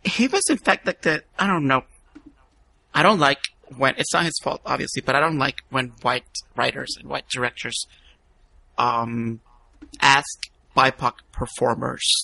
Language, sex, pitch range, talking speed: English, male, 115-155 Hz, 155 wpm